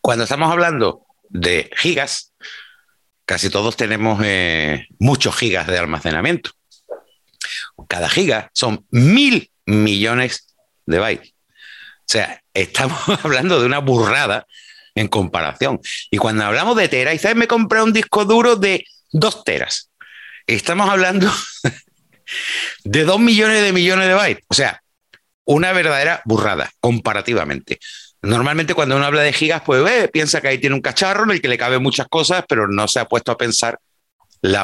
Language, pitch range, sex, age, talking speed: Spanish, 110-170 Hz, male, 60-79, 150 wpm